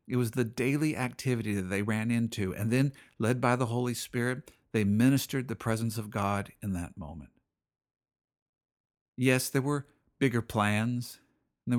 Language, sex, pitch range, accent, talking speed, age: English, male, 100-125 Hz, American, 165 wpm, 50-69